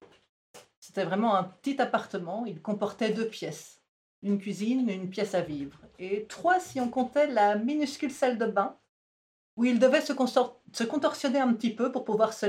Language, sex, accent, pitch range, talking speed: French, female, French, 190-235 Hz, 180 wpm